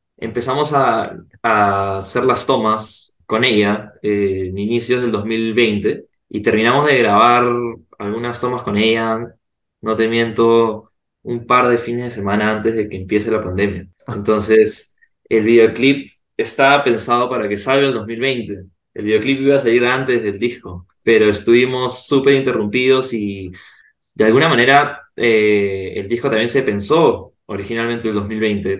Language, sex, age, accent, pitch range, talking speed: Spanish, male, 20-39, Argentinian, 105-125 Hz, 150 wpm